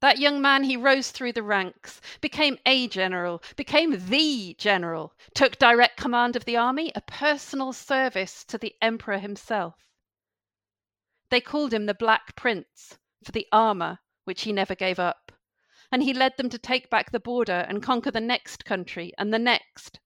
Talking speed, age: 175 wpm, 50-69